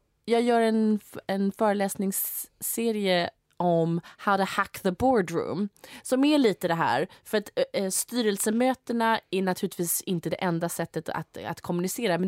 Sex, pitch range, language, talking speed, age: female, 175-220 Hz, English, 140 wpm, 20-39